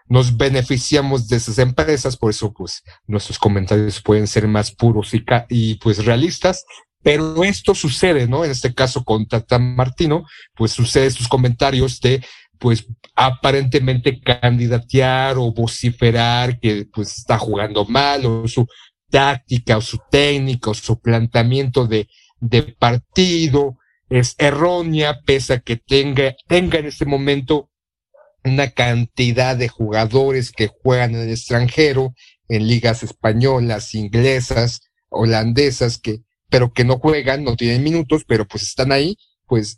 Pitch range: 115-140 Hz